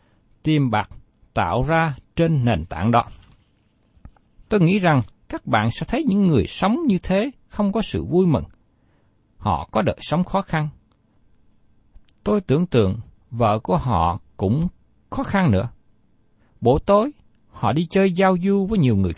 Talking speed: 155 wpm